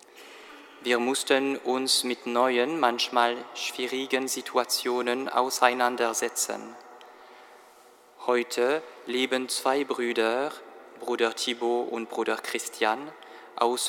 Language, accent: German, German